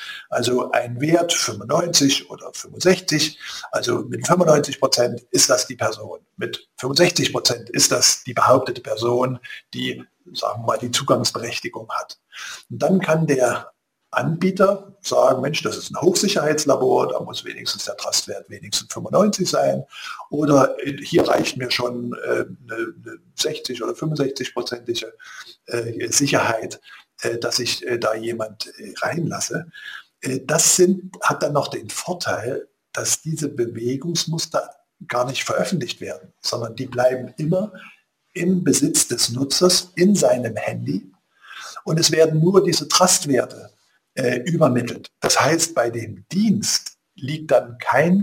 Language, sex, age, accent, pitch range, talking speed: German, male, 50-69, German, 125-180 Hz, 125 wpm